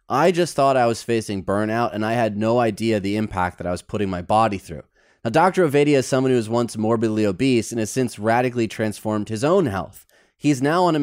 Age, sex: 30-49, male